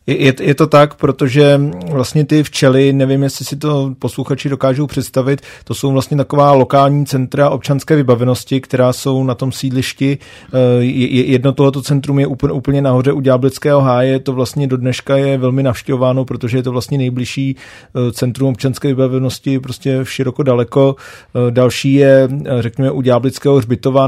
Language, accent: Czech, native